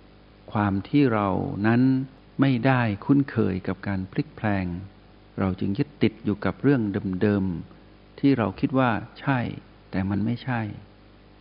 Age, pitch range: 60-79, 100-120 Hz